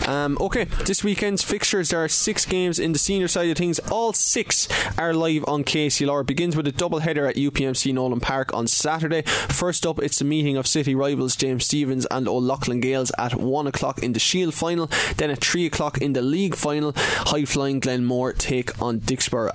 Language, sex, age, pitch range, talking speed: English, male, 20-39, 120-155 Hz, 205 wpm